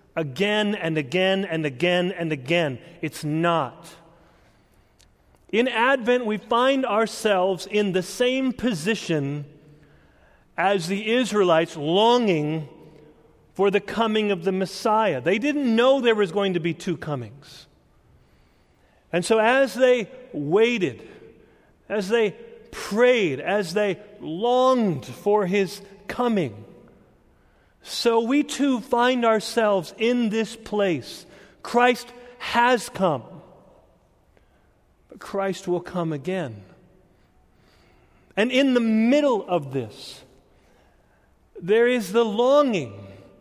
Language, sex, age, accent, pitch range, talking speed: English, male, 40-59, American, 165-235 Hz, 110 wpm